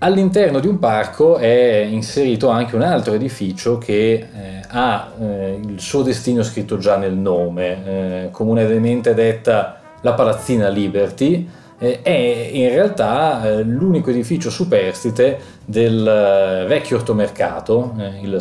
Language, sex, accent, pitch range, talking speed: Italian, male, native, 100-120 Hz, 110 wpm